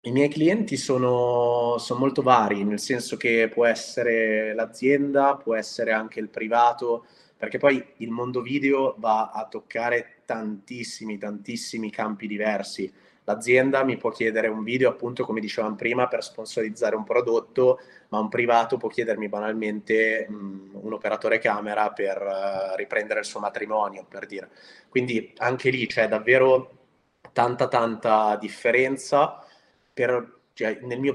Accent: native